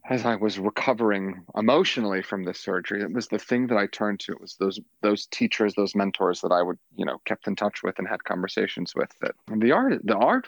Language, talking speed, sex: English, 240 wpm, male